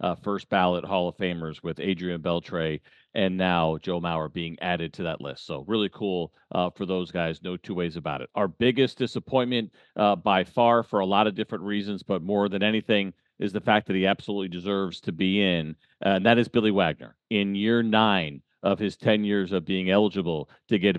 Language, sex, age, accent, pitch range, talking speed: English, male, 40-59, American, 95-115 Hz, 210 wpm